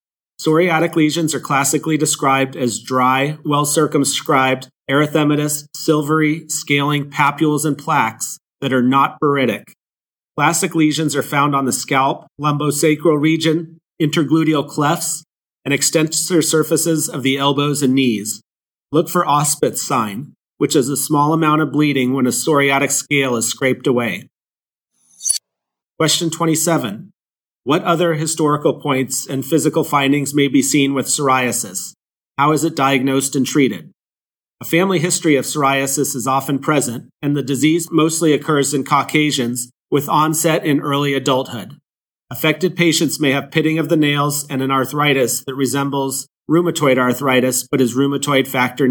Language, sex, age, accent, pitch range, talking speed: English, male, 30-49, American, 135-155 Hz, 140 wpm